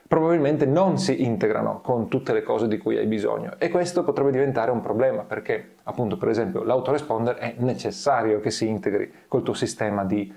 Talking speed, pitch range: 185 wpm, 110-140 Hz